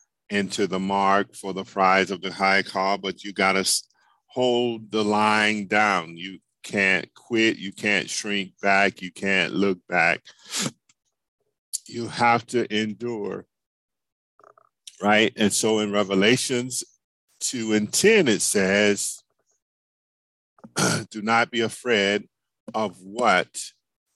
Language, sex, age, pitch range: English, male, 50-69, 95-115 Hz